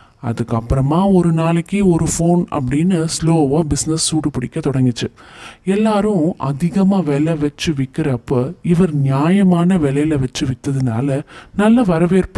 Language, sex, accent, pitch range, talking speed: Tamil, male, native, 135-175 Hz, 105 wpm